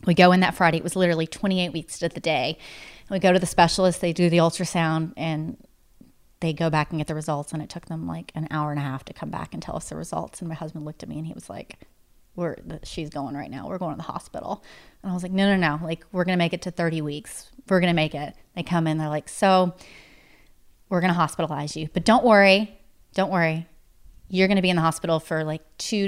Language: English